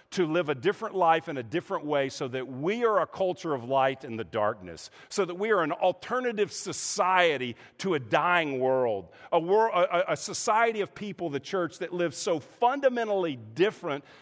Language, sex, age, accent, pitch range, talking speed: English, male, 50-69, American, 125-180 Hz, 190 wpm